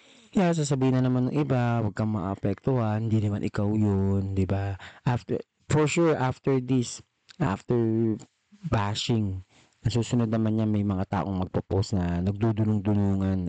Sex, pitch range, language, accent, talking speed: male, 105-130 Hz, Filipino, native, 140 wpm